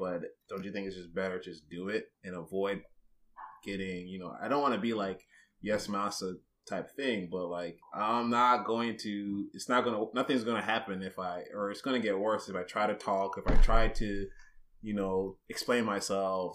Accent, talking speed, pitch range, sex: American, 220 wpm, 95-110 Hz, male